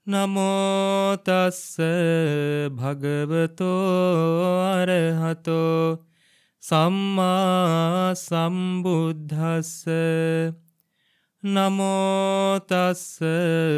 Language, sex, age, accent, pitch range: English, male, 30-49, Indian, 165-185 Hz